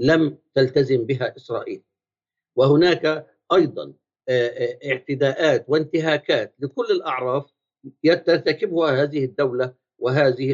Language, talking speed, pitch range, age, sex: Arabic, 80 wpm, 140-185 Hz, 60-79, male